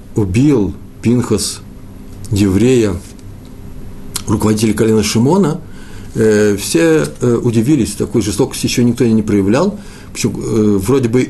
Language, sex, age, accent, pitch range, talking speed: Russian, male, 50-69, native, 105-140 Hz, 85 wpm